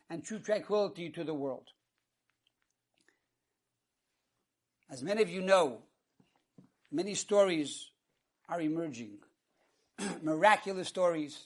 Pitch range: 170-230 Hz